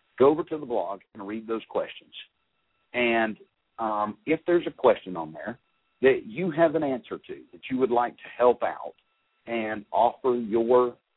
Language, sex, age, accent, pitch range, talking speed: English, male, 50-69, American, 105-130 Hz, 175 wpm